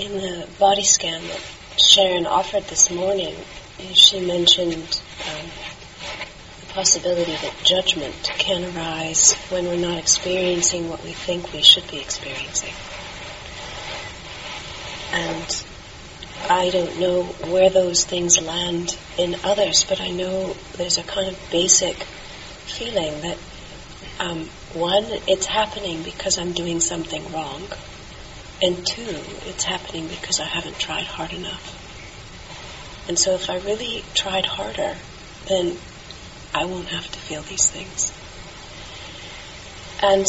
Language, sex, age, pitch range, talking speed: English, female, 40-59, 175-195 Hz, 125 wpm